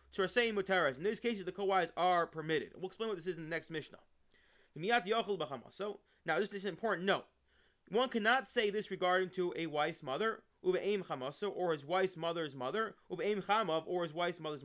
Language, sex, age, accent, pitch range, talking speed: English, male, 30-49, American, 160-200 Hz, 185 wpm